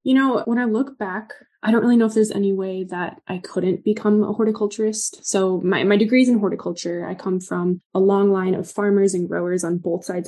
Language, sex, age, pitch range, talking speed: English, female, 20-39, 185-220 Hz, 230 wpm